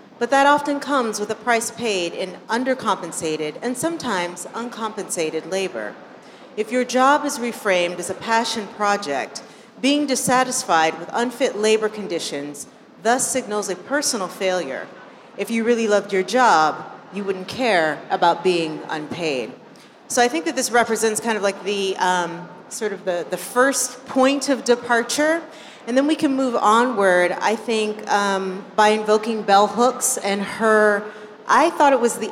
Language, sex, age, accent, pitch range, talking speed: English, female, 40-59, American, 185-240 Hz, 160 wpm